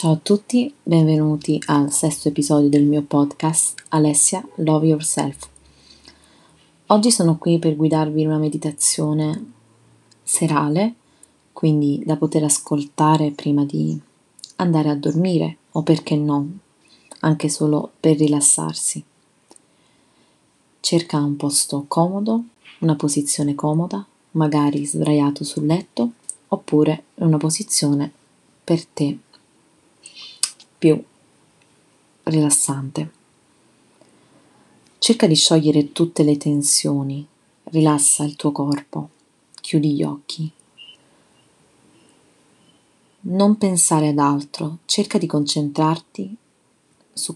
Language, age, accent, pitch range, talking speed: Italian, 20-39, native, 145-165 Hz, 100 wpm